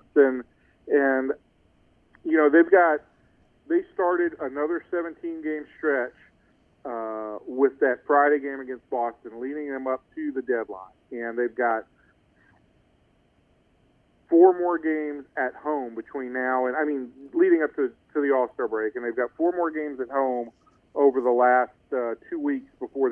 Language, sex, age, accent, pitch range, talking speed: English, male, 40-59, American, 130-175 Hz, 160 wpm